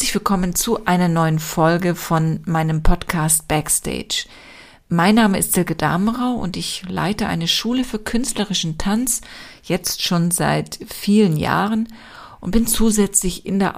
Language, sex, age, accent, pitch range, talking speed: German, female, 50-69, German, 170-210 Hz, 140 wpm